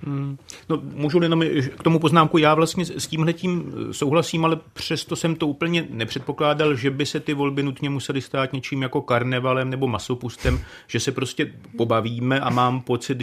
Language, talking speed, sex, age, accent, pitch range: Czech, 170 wpm, male, 30-49, native, 125-145 Hz